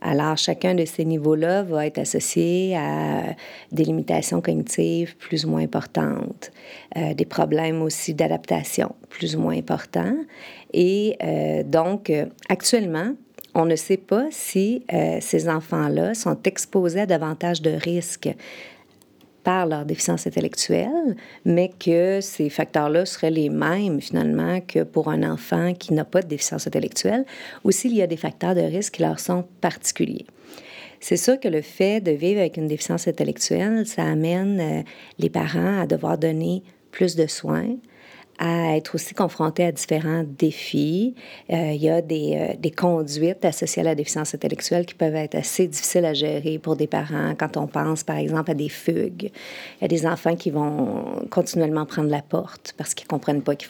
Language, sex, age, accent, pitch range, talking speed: French, female, 50-69, Canadian, 155-185 Hz, 170 wpm